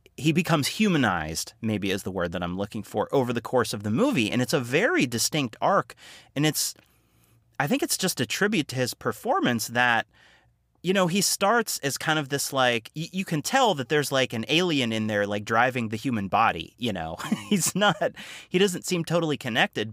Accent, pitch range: American, 110-140 Hz